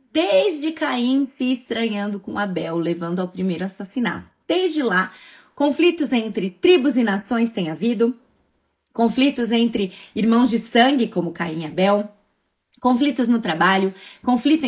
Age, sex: 20-39, female